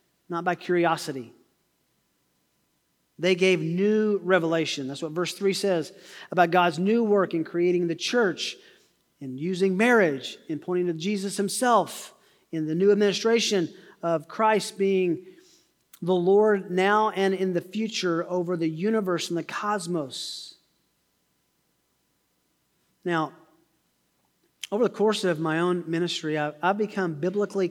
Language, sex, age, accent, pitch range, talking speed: English, male, 40-59, American, 165-195 Hz, 130 wpm